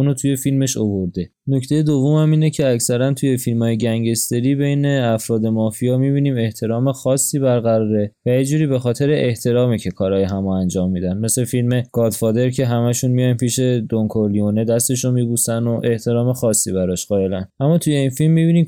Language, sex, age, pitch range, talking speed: Persian, male, 20-39, 110-135 Hz, 165 wpm